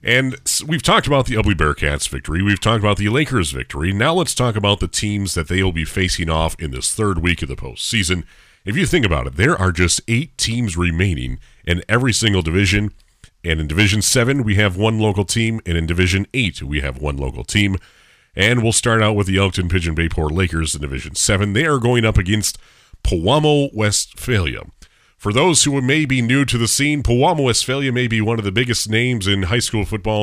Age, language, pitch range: 40-59, English, 85-115 Hz